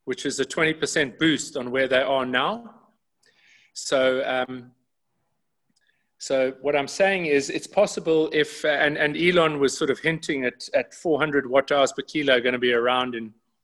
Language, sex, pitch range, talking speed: English, male, 130-155 Hz, 175 wpm